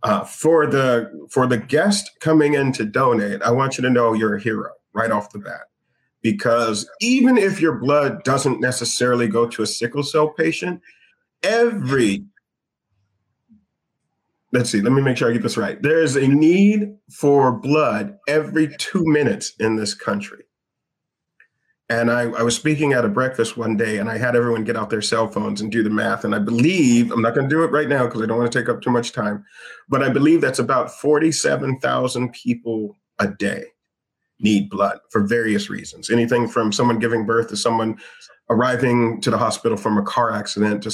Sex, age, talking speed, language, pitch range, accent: male, 40-59, 195 wpm, English, 115-150 Hz, American